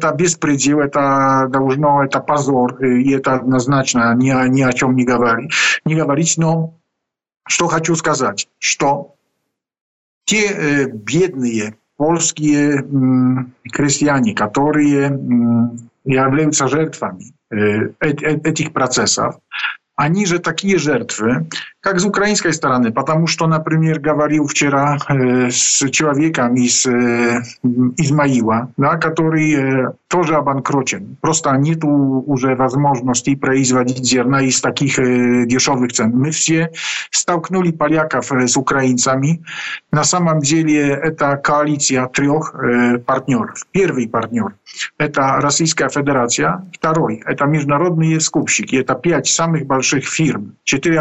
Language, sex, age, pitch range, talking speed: Ukrainian, male, 50-69, 130-160 Hz, 110 wpm